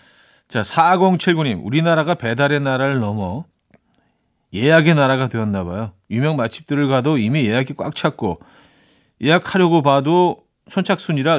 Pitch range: 110-160 Hz